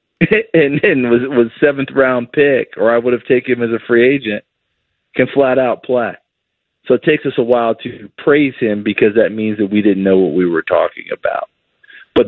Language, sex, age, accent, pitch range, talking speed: English, male, 40-59, American, 105-135 Hz, 200 wpm